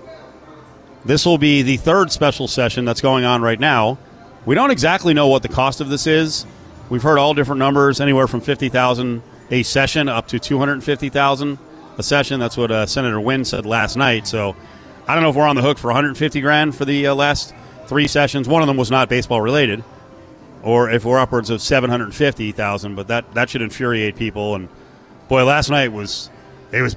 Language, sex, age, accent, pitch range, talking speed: English, male, 40-59, American, 115-145 Hz, 200 wpm